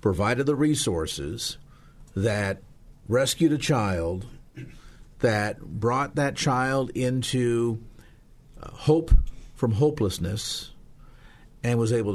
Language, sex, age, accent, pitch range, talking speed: English, male, 50-69, American, 100-125 Hz, 90 wpm